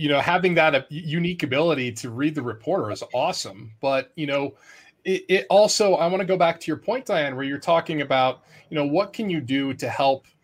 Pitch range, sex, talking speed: 130-180 Hz, male, 225 wpm